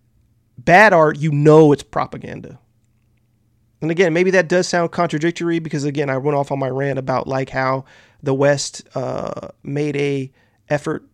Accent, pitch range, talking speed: American, 120-155 Hz, 160 wpm